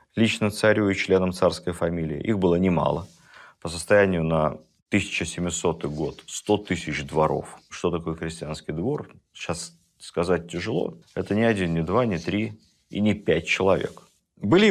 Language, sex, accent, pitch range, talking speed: Russian, male, native, 80-95 Hz, 145 wpm